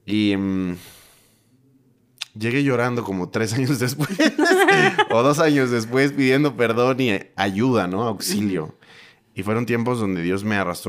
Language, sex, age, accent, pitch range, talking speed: Spanish, male, 20-39, Mexican, 90-120 Hz, 140 wpm